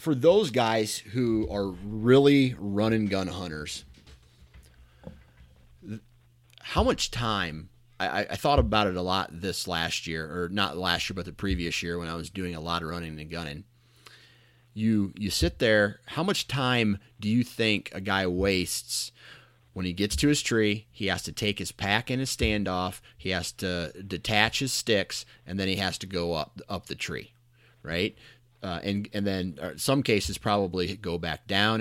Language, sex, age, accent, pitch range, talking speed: English, male, 30-49, American, 90-120 Hz, 180 wpm